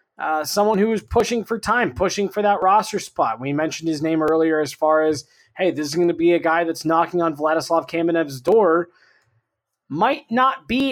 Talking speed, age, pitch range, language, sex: 205 wpm, 20-39, 170-235 Hz, English, male